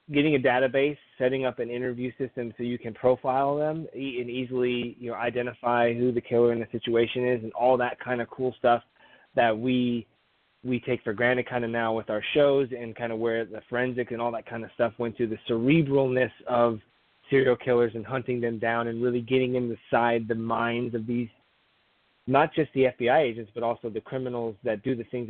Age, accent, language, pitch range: 20-39, American, English, 115-125 Hz